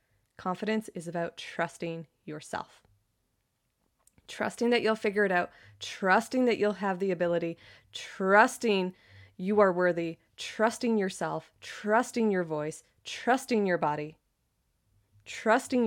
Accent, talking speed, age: American, 115 wpm, 20-39